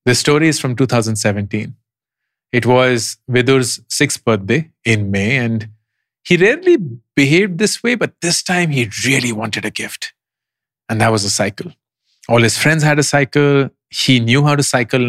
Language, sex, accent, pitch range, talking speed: English, male, Indian, 110-150 Hz, 165 wpm